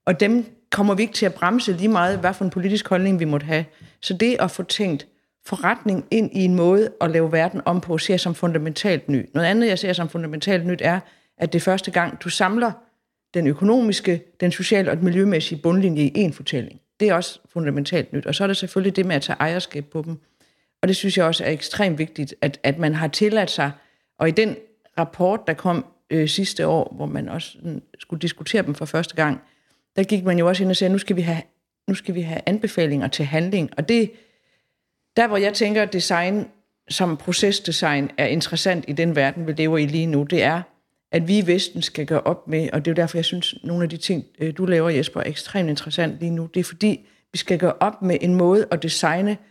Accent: native